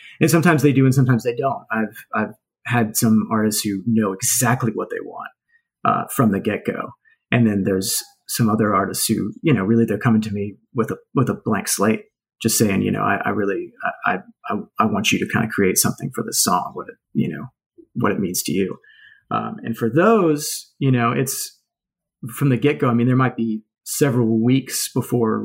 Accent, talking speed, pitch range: American, 215 wpm, 110-145 Hz